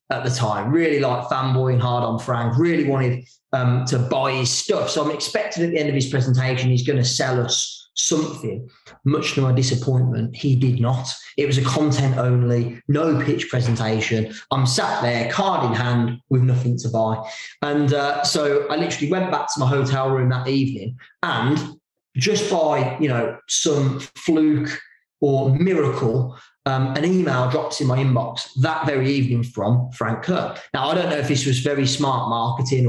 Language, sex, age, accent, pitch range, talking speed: English, male, 20-39, British, 125-150 Hz, 185 wpm